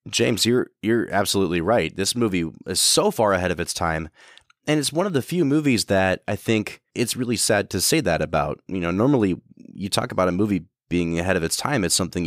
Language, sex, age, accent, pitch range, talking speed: English, male, 20-39, American, 95-120 Hz, 225 wpm